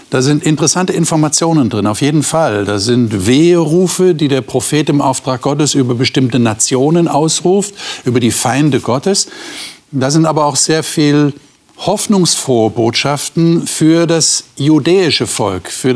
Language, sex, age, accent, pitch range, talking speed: German, male, 50-69, German, 120-165 Hz, 145 wpm